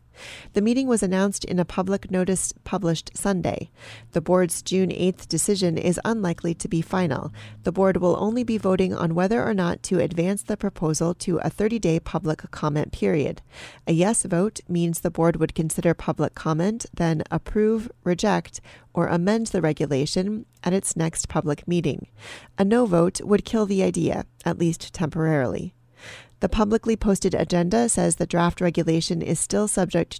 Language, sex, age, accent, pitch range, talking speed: English, female, 40-59, American, 165-195 Hz, 165 wpm